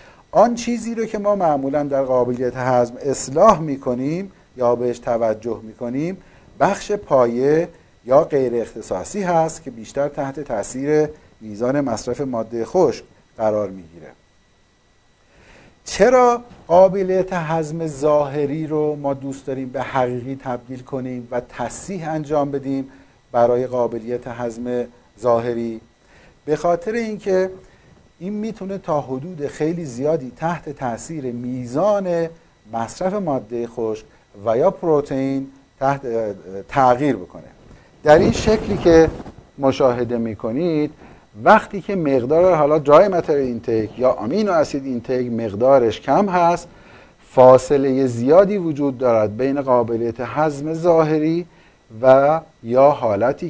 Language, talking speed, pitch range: Persian, 115 wpm, 120-160 Hz